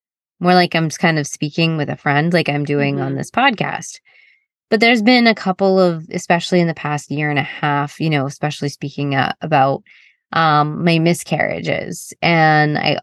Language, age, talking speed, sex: English, 20-39, 185 wpm, female